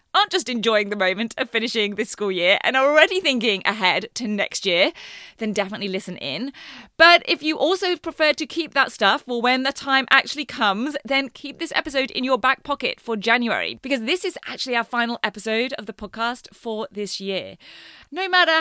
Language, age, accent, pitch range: English, 30-49, British, 205-275 Hz